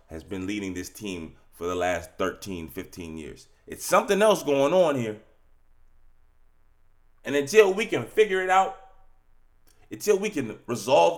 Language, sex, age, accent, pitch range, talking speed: English, male, 30-49, American, 80-135 Hz, 150 wpm